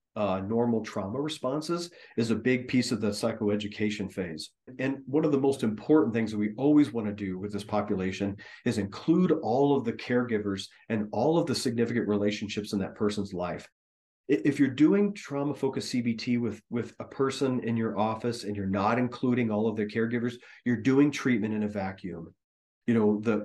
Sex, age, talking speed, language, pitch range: male, 40-59, 185 wpm, English, 105-135 Hz